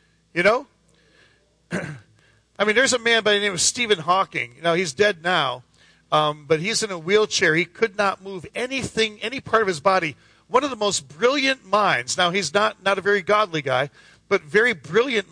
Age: 40-59